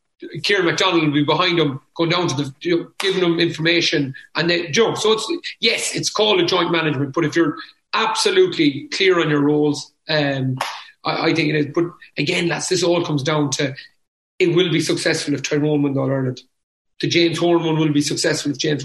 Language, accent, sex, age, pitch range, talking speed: English, Irish, male, 30-49, 150-175 Hz, 215 wpm